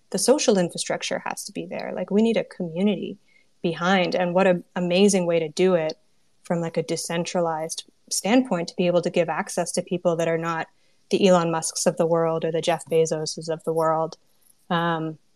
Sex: female